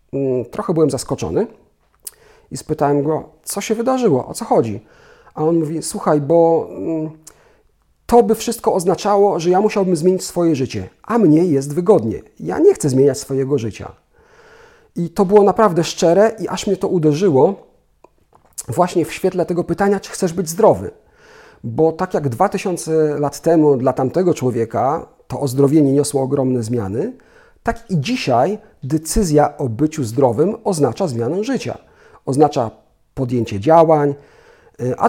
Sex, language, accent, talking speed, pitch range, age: male, Polish, native, 145 wpm, 135-200 Hz, 40-59